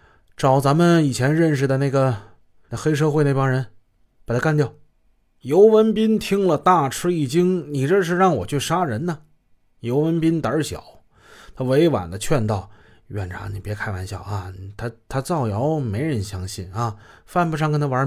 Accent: native